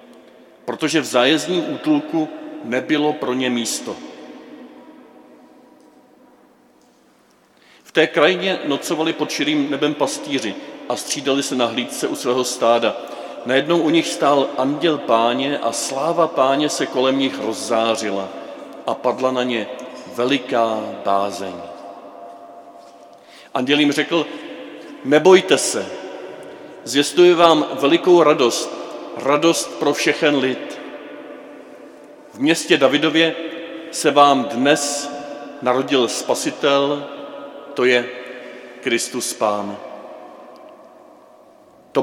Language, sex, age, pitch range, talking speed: Czech, male, 40-59, 115-150 Hz, 100 wpm